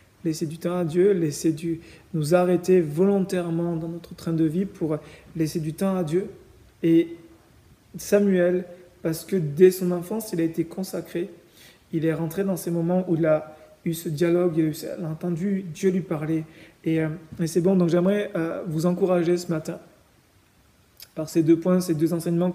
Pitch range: 165-185 Hz